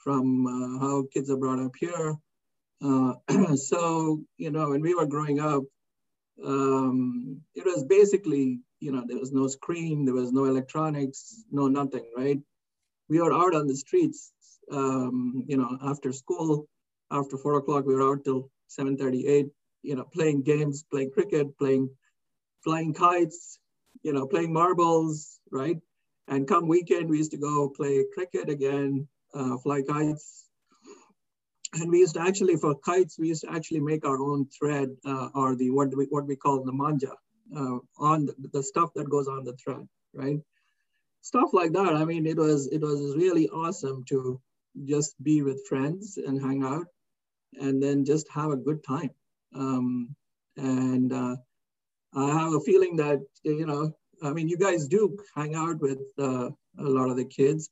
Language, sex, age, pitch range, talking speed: English, male, 50-69, 135-160 Hz, 175 wpm